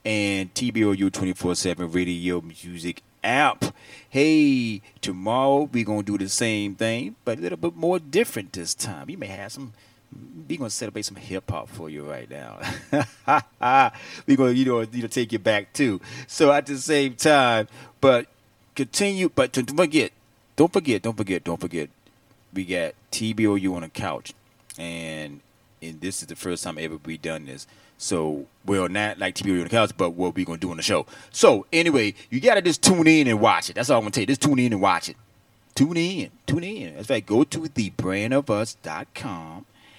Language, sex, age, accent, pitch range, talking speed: English, male, 30-49, American, 90-130 Hz, 195 wpm